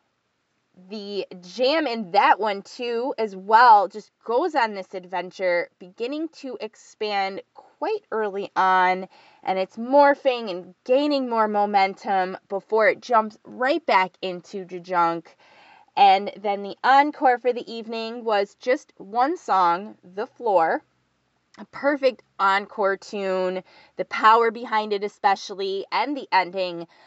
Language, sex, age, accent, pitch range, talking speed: English, female, 20-39, American, 185-250 Hz, 130 wpm